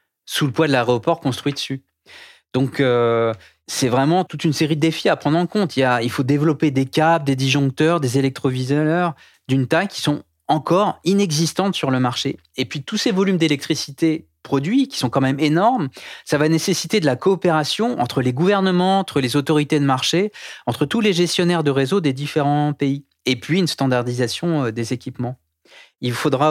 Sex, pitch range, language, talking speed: male, 135-165 Hz, French, 190 wpm